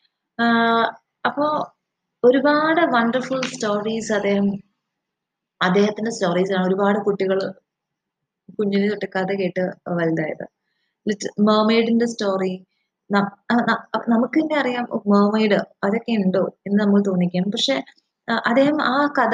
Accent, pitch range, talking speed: Indian, 185-235 Hz, 35 wpm